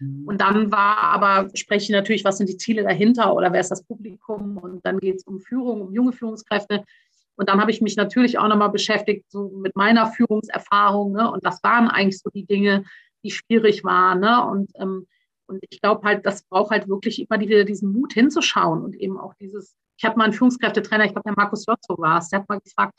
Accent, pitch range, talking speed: German, 195-235 Hz, 225 wpm